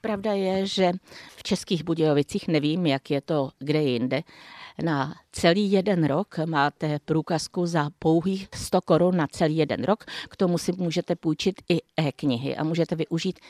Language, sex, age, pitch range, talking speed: Czech, female, 50-69, 150-190 Hz, 160 wpm